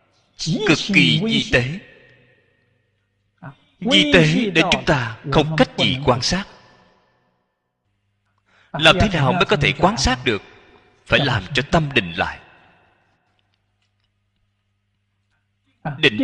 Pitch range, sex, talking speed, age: 100-140 Hz, male, 110 wpm, 30-49